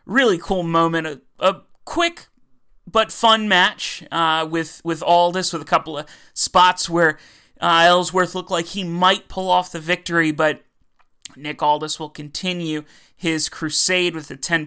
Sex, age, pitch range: male, 30-49, 155-185 Hz